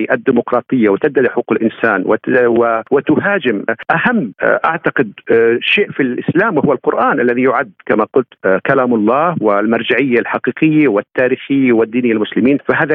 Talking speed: 110 wpm